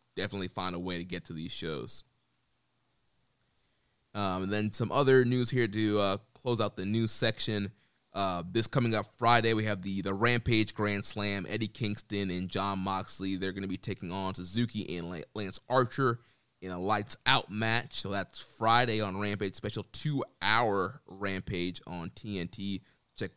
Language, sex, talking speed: English, male, 170 wpm